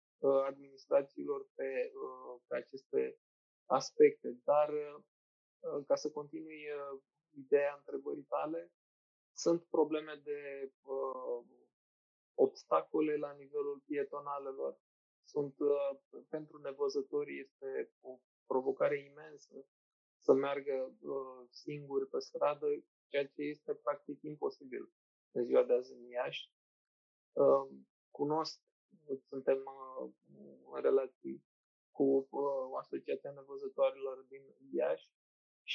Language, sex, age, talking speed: Romanian, male, 20-39, 85 wpm